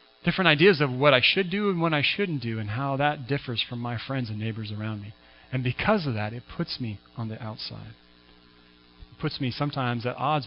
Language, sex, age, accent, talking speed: English, male, 40-59, American, 225 wpm